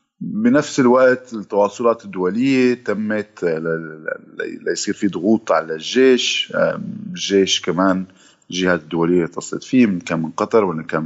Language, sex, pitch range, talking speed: Arabic, male, 80-125 Hz, 125 wpm